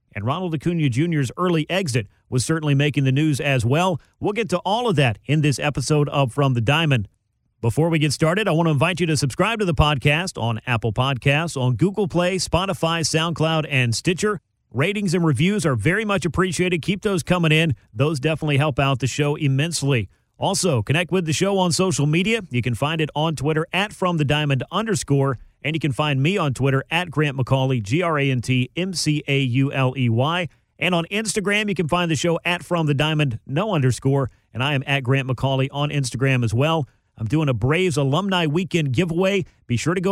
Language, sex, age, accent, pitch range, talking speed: English, male, 40-59, American, 135-175 Hz, 195 wpm